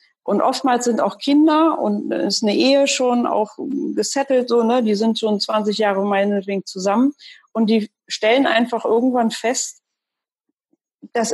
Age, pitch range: 40-59, 205-255 Hz